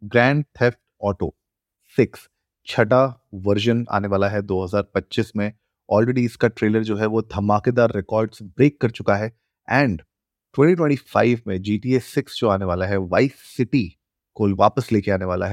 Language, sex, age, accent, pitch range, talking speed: Hindi, male, 30-49, native, 95-120 Hz, 135 wpm